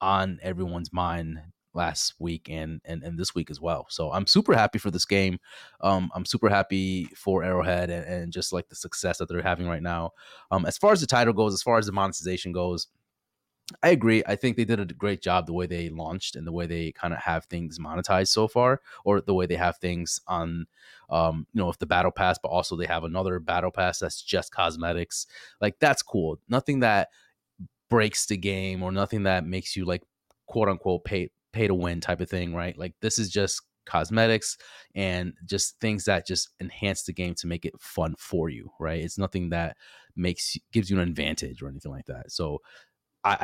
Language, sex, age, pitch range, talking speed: English, male, 20-39, 85-100 Hz, 215 wpm